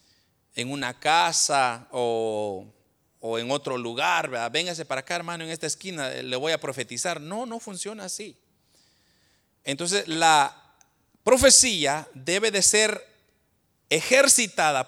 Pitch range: 140-215 Hz